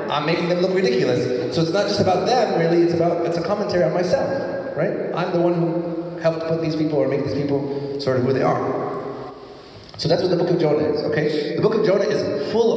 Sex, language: male, English